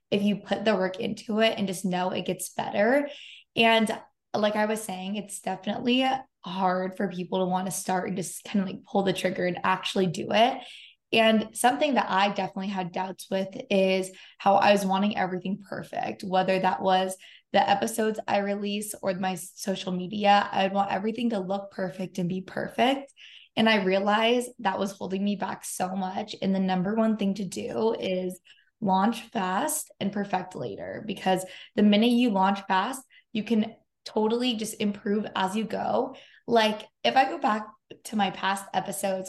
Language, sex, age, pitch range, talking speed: English, female, 20-39, 190-225 Hz, 185 wpm